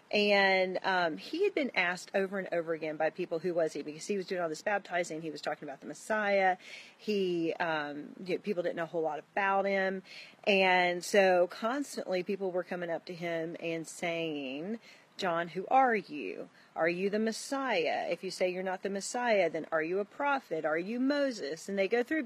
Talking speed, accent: 205 wpm, American